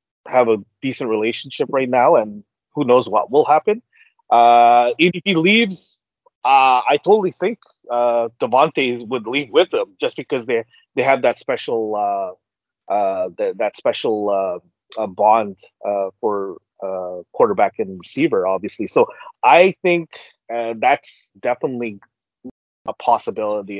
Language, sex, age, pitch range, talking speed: English, male, 30-49, 105-165 Hz, 140 wpm